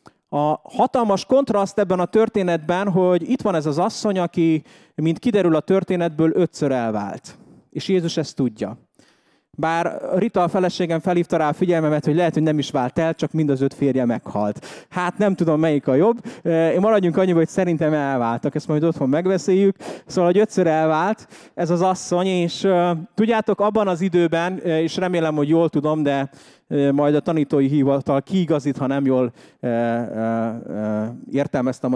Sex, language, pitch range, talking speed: male, English, 145-190 Hz, 160 wpm